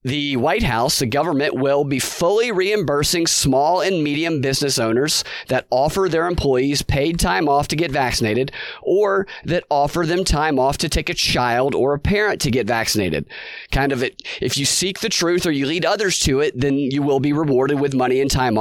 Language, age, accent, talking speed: English, 30-49, American, 205 wpm